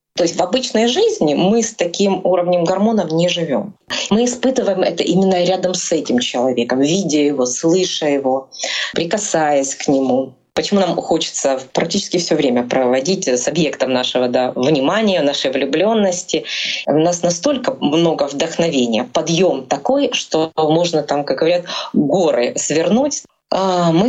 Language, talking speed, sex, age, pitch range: Russian, 140 wpm, female, 20-39, 155-210 Hz